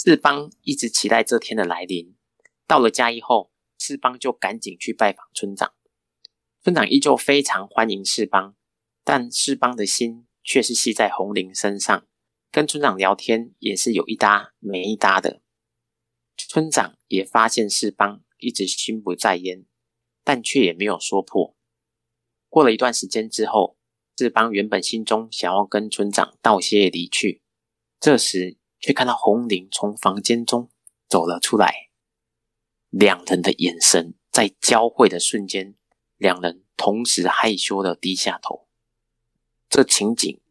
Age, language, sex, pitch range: 30-49, Chinese, male, 100-120 Hz